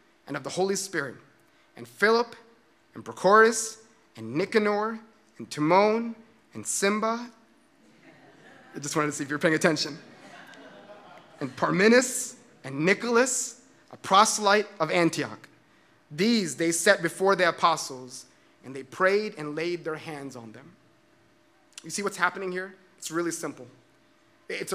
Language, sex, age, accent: English, male, 30-49, American